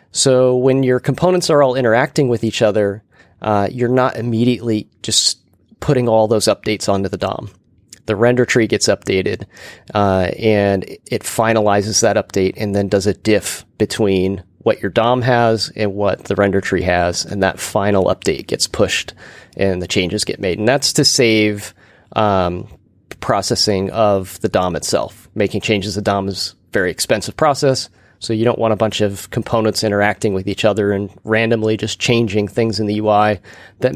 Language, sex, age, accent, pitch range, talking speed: English, male, 30-49, American, 100-115 Hz, 175 wpm